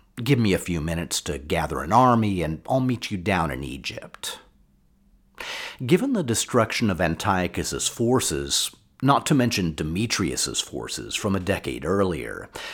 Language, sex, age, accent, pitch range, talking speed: English, male, 50-69, American, 90-140 Hz, 145 wpm